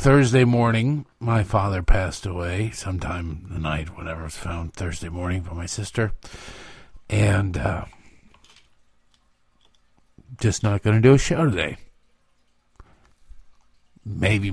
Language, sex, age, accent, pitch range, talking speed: English, male, 50-69, American, 90-120 Hz, 120 wpm